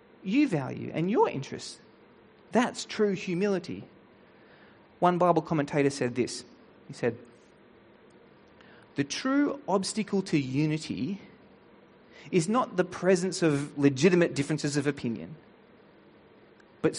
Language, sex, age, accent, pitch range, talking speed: English, male, 30-49, Australian, 145-205 Hz, 105 wpm